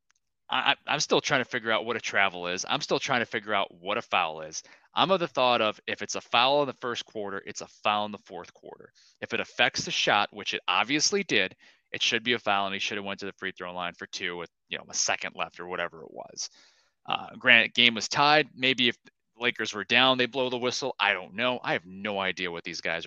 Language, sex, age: English, male, 20-39